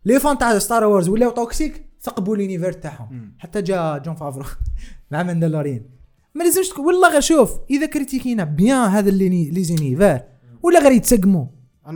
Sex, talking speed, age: male, 150 wpm, 20-39